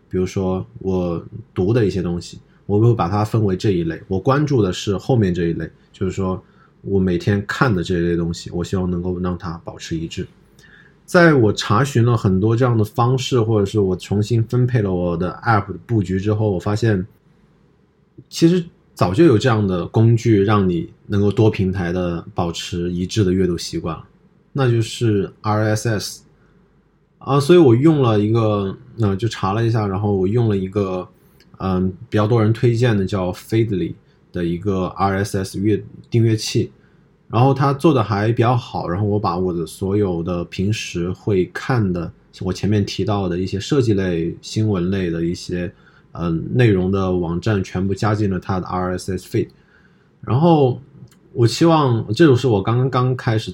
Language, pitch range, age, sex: Chinese, 90-115 Hz, 20-39, male